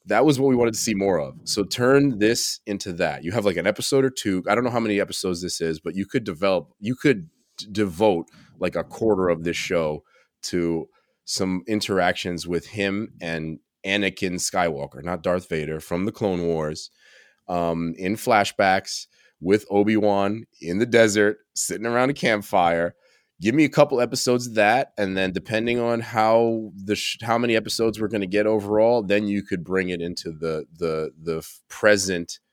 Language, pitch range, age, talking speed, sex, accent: English, 85-115 Hz, 30-49, 185 wpm, male, American